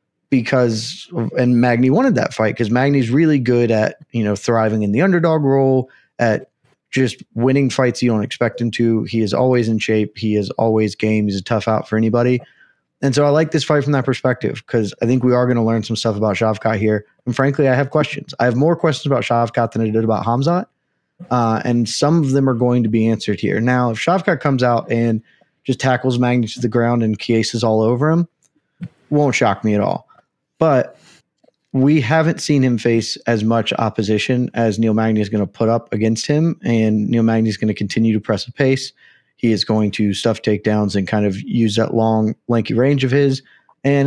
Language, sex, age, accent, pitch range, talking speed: English, male, 20-39, American, 110-135 Hz, 220 wpm